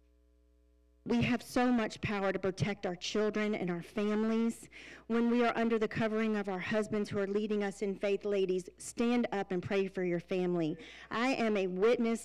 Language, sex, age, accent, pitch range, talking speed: English, female, 40-59, American, 190-225 Hz, 190 wpm